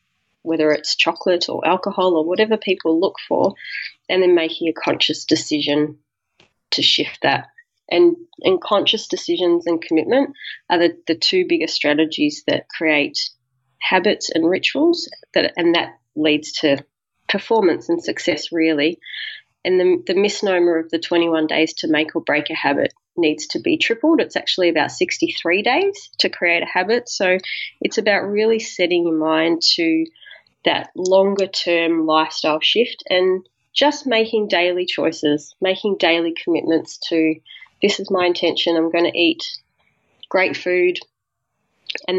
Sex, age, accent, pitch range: female, 30-49, Australian, 160-205 Hz